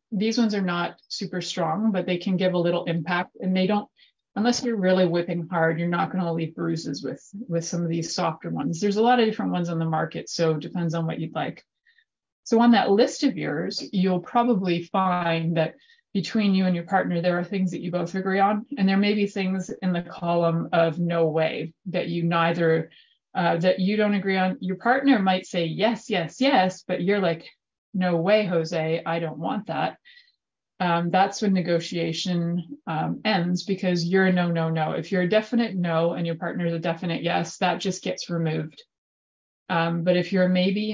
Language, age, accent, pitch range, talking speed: English, 30-49, American, 170-205 Hz, 210 wpm